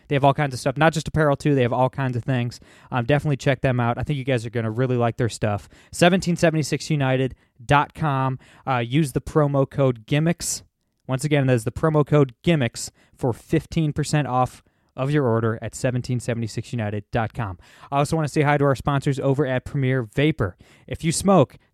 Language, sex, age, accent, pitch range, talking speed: English, male, 20-39, American, 120-145 Hz, 195 wpm